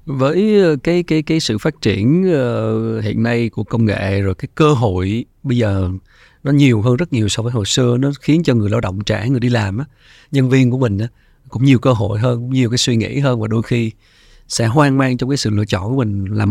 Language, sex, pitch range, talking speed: Vietnamese, male, 110-135 Hz, 245 wpm